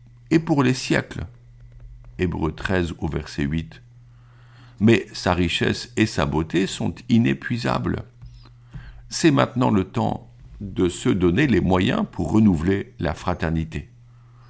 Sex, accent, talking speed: male, French, 125 wpm